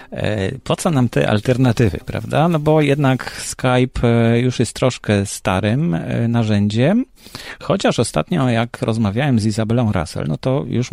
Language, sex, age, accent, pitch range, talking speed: Polish, male, 40-59, native, 100-120 Hz, 135 wpm